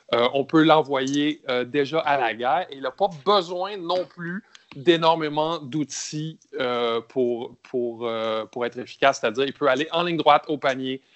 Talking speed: 185 wpm